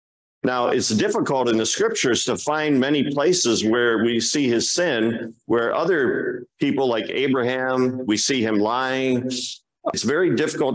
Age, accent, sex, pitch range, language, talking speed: 50-69, American, male, 105-130 Hz, English, 150 wpm